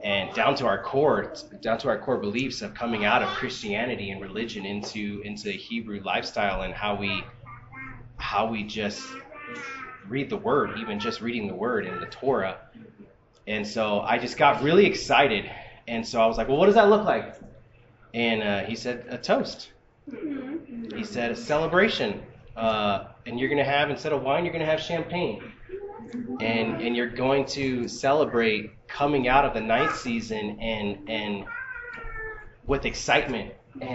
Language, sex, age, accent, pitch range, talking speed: English, male, 30-49, American, 110-155 Hz, 170 wpm